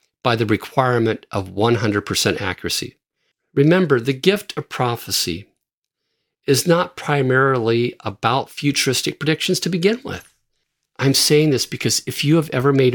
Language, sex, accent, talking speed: English, male, American, 135 wpm